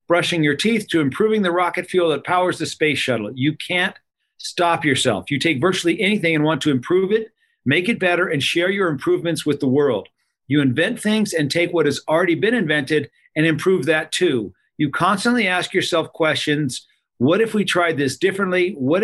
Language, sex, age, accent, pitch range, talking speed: English, male, 50-69, American, 150-195 Hz, 195 wpm